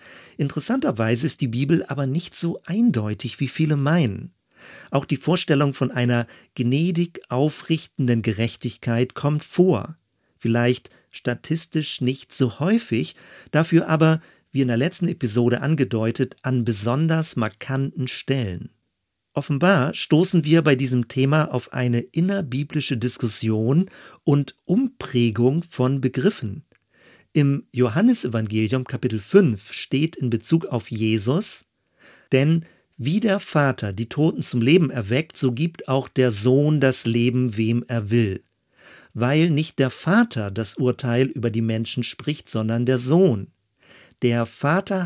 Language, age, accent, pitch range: German, 40-59, German, 120-160 Hz